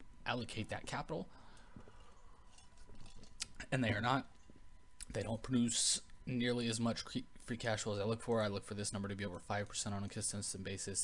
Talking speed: 180 wpm